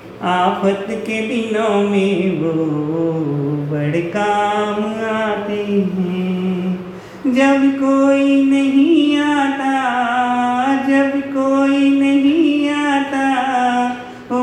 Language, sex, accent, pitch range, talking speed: Hindi, male, native, 185-220 Hz, 75 wpm